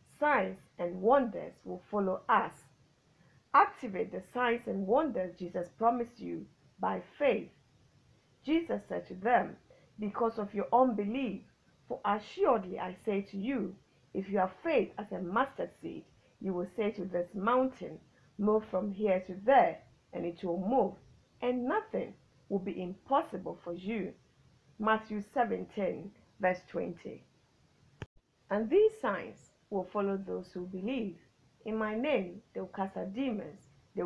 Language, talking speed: English, 145 wpm